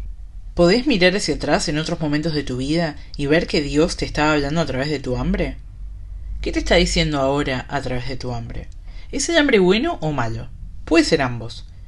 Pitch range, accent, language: 125-170 Hz, Argentinian, Spanish